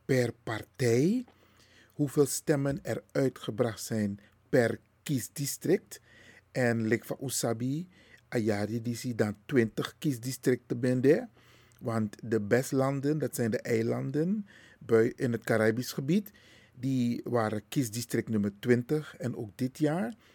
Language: Dutch